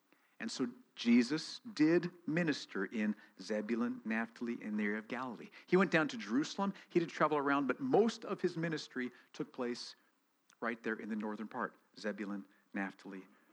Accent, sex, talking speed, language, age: American, male, 165 wpm, English, 50-69